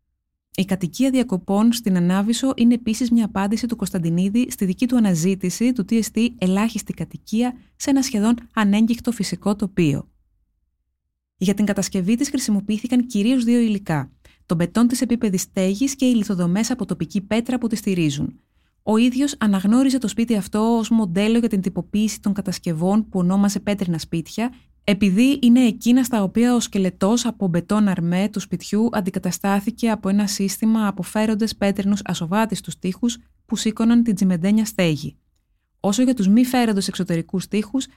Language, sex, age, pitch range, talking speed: Greek, female, 20-39, 185-230 Hz, 155 wpm